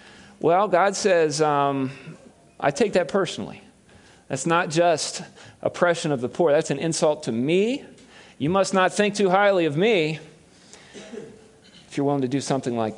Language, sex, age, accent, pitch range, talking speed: English, male, 40-59, American, 135-180 Hz, 160 wpm